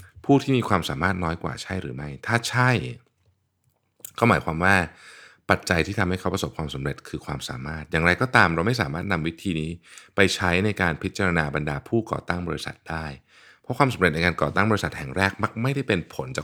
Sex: male